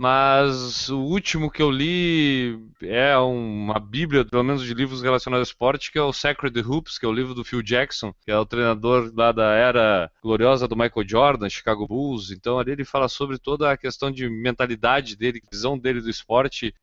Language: Portuguese